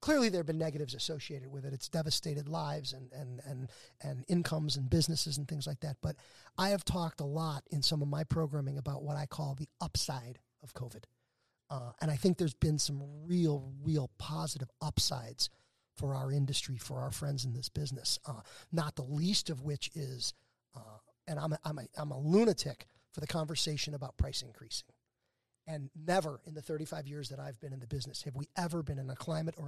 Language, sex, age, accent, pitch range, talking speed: English, male, 40-59, American, 140-175 Hz, 210 wpm